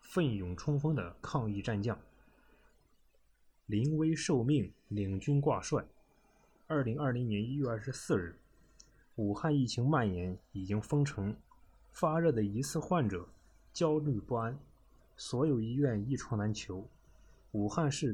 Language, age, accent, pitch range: Chinese, 20-39, native, 105-145 Hz